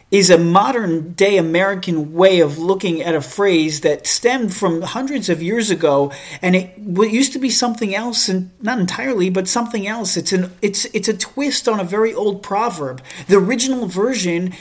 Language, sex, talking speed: English, male, 180 wpm